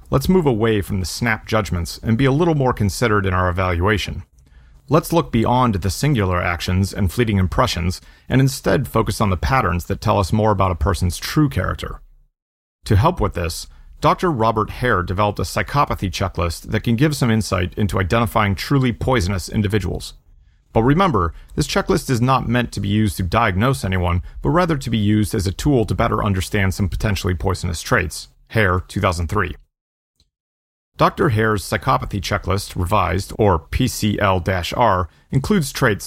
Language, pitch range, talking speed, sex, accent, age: English, 90-120 Hz, 165 wpm, male, American, 40-59